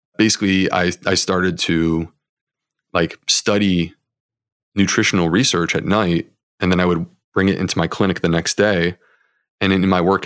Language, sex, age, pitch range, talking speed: English, male, 30-49, 85-95 Hz, 160 wpm